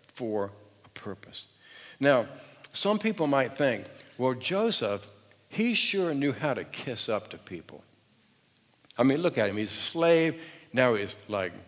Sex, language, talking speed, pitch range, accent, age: male, English, 155 wpm, 105-135 Hz, American, 60-79